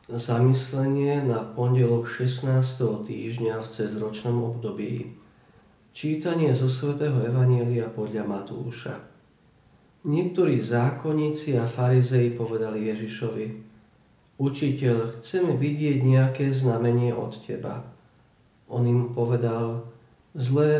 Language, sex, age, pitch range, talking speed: Slovak, male, 50-69, 120-145 Hz, 90 wpm